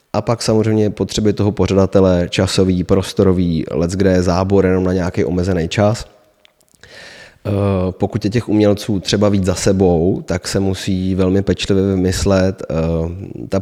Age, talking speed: 20-39, 140 wpm